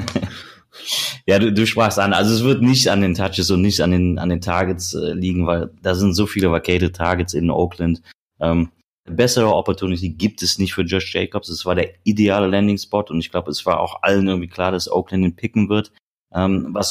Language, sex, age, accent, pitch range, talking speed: German, male, 30-49, German, 90-105 Hz, 215 wpm